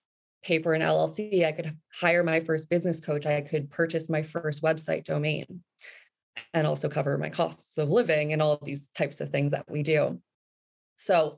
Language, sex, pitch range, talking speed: English, female, 155-175 Hz, 185 wpm